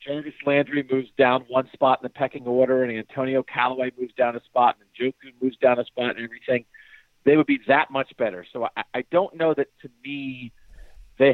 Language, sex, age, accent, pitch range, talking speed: English, male, 50-69, American, 125-165 Hz, 210 wpm